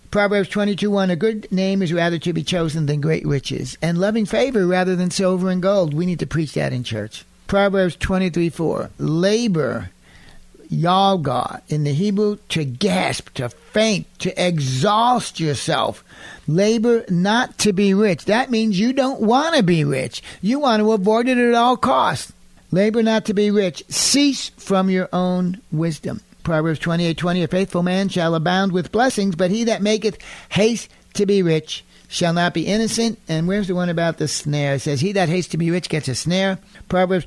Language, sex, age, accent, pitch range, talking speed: English, male, 60-79, American, 160-205 Hz, 185 wpm